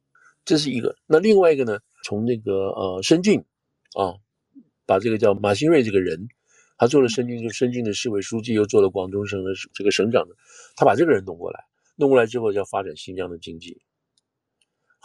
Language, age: Chinese, 50-69